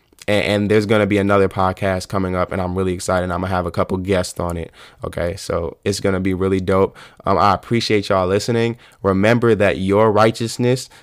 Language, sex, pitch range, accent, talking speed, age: English, male, 95-115 Hz, American, 210 wpm, 20-39